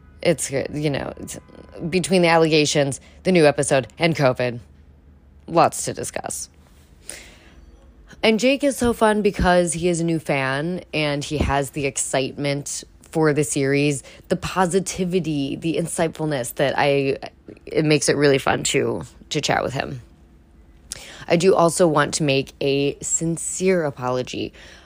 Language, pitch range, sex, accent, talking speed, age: English, 130-155 Hz, female, American, 140 wpm, 20-39